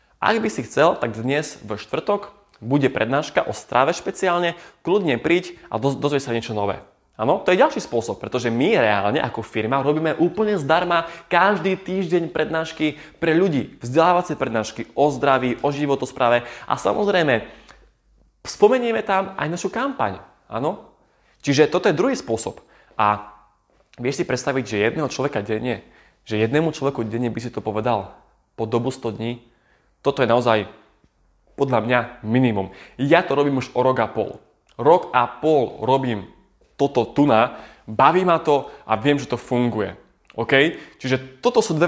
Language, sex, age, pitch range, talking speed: Slovak, male, 20-39, 110-150 Hz, 160 wpm